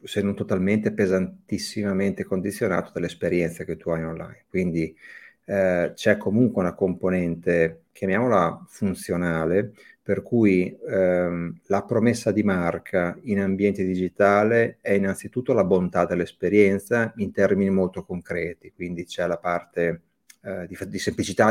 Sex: male